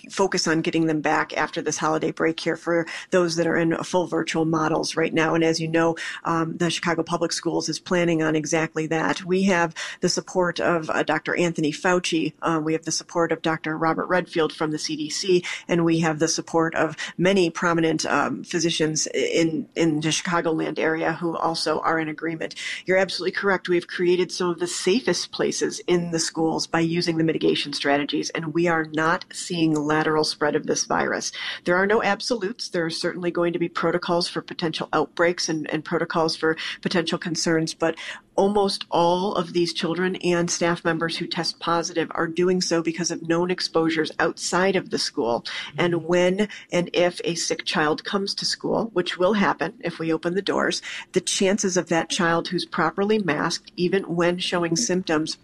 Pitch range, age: 160-180 Hz, 40-59